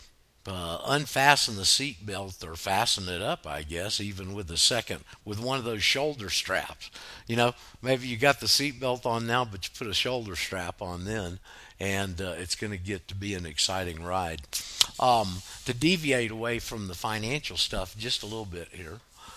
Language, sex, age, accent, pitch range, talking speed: English, male, 50-69, American, 90-115 Hz, 195 wpm